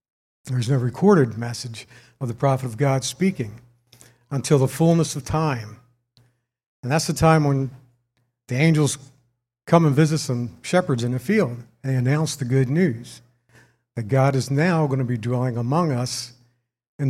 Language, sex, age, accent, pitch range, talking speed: English, male, 60-79, American, 120-150 Hz, 165 wpm